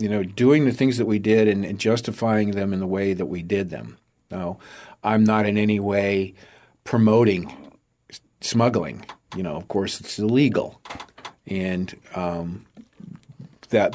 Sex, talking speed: male, 155 wpm